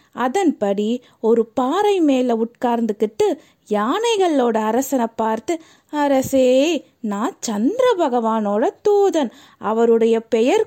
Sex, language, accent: female, Tamil, native